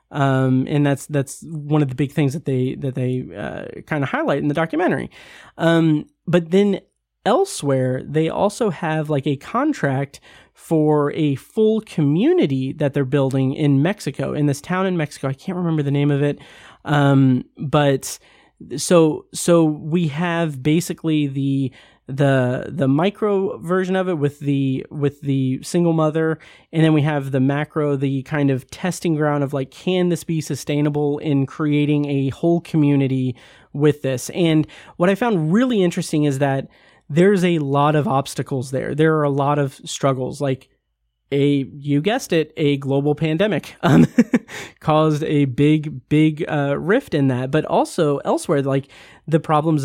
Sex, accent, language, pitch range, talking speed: male, American, English, 140-170 Hz, 165 wpm